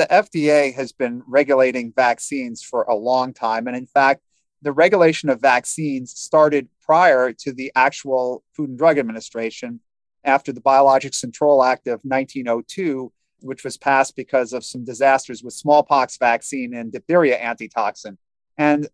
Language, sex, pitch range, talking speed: English, male, 120-145 Hz, 150 wpm